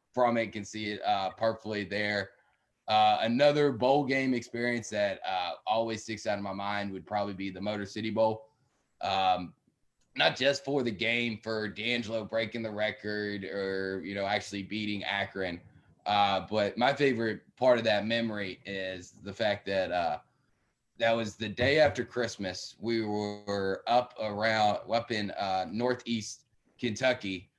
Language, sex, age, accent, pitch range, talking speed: English, male, 20-39, American, 100-115 Hz, 160 wpm